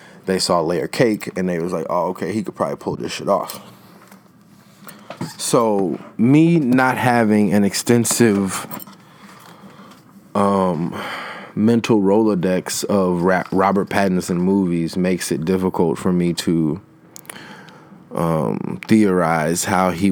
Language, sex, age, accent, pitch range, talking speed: English, male, 20-39, American, 95-145 Hz, 125 wpm